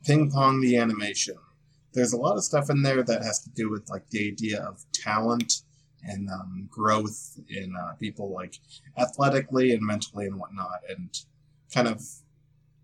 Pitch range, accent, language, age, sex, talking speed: 105-145 Hz, American, English, 20-39, male, 170 wpm